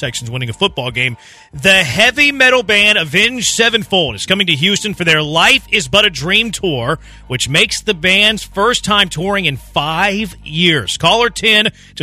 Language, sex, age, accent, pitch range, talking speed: English, male, 30-49, American, 145-205 Hz, 180 wpm